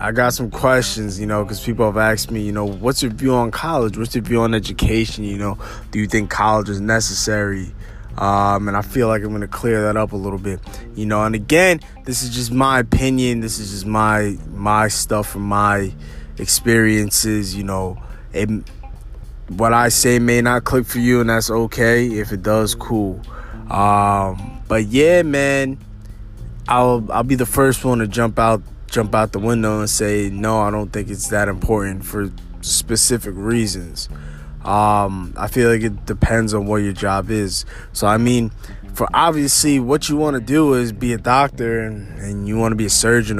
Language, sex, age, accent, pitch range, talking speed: English, male, 20-39, American, 100-120 Hz, 195 wpm